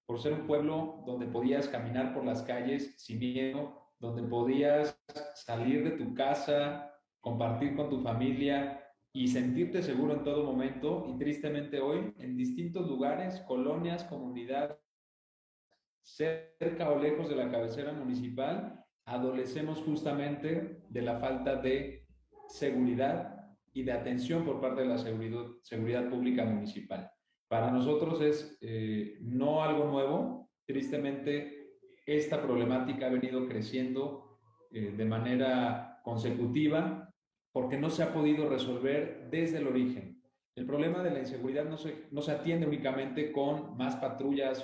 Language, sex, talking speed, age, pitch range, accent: Spanish, male, 135 wpm, 40-59, 125-150 Hz, Mexican